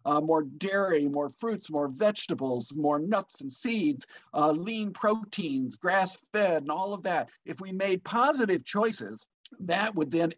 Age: 50-69